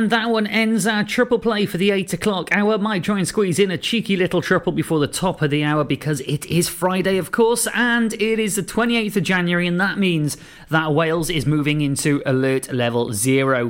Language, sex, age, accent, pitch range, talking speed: English, male, 30-49, British, 140-190 Hz, 225 wpm